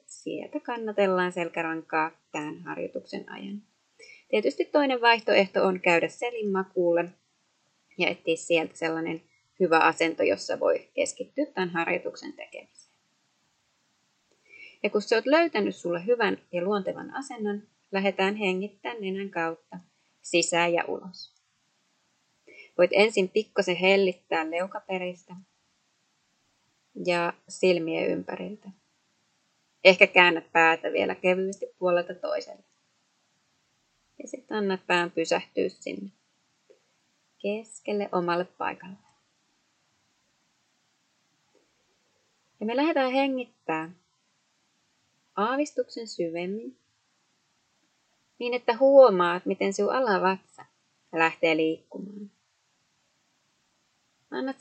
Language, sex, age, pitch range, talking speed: Finnish, female, 20-39, 170-230 Hz, 90 wpm